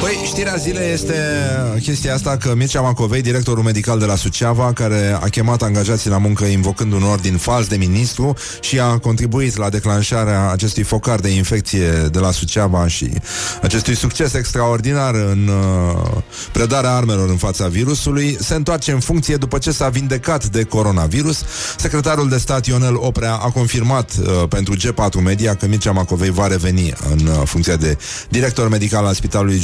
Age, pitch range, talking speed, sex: 30-49, 100-125 Hz, 160 wpm, male